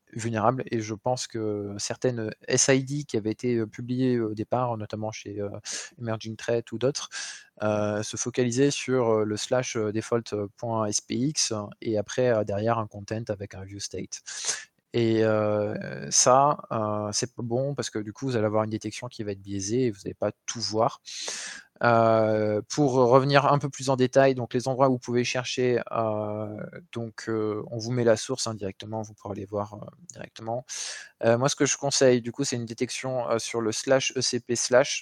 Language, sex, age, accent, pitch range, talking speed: French, male, 20-39, French, 105-125 Hz, 185 wpm